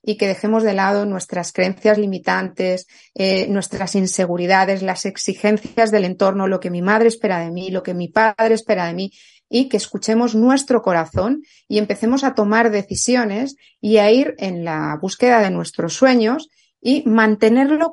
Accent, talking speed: Spanish, 165 wpm